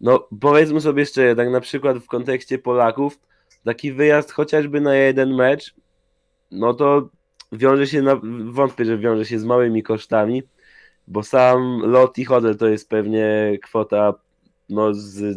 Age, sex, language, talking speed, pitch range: 20-39, male, Polish, 150 wpm, 115-140 Hz